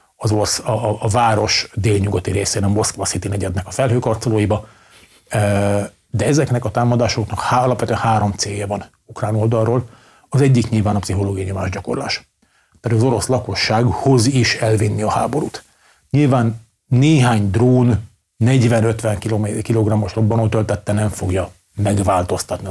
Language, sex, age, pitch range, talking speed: Hungarian, male, 40-59, 100-120 Hz, 125 wpm